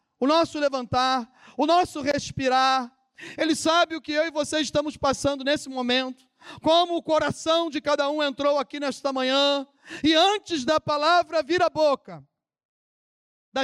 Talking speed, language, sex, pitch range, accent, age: 155 wpm, Portuguese, male, 195-310 Hz, Brazilian, 40-59